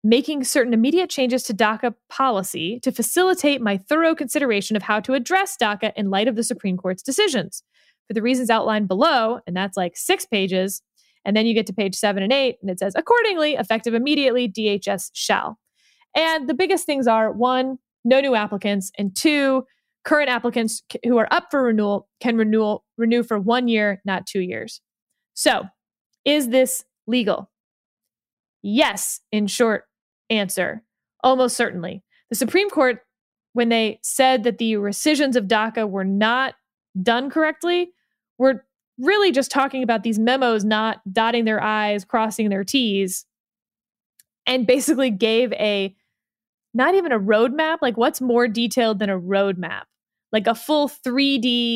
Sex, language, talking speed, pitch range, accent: female, English, 160 wpm, 210-265 Hz, American